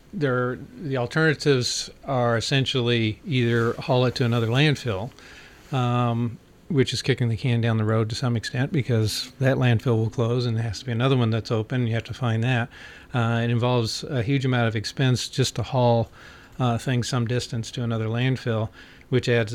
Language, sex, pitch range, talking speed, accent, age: English, male, 115-130 Hz, 185 wpm, American, 40-59